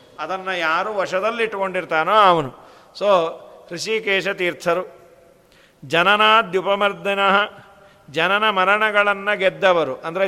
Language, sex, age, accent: Kannada, male, 50-69, native